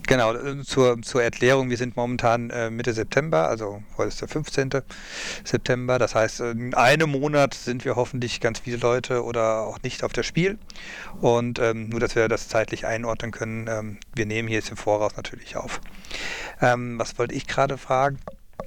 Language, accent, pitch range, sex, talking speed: German, German, 115-135 Hz, male, 185 wpm